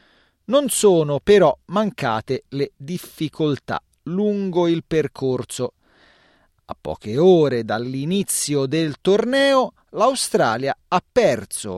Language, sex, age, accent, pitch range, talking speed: Italian, male, 40-59, native, 125-195 Hz, 90 wpm